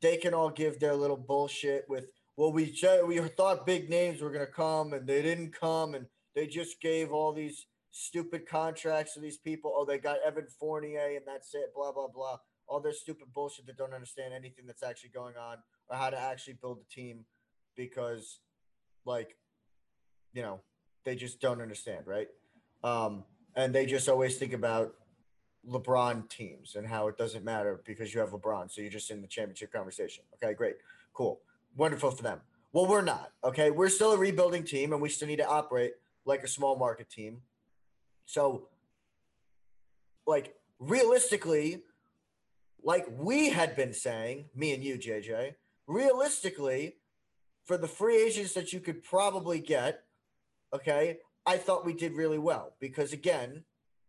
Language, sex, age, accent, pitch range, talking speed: English, male, 20-39, American, 130-165 Hz, 170 wpm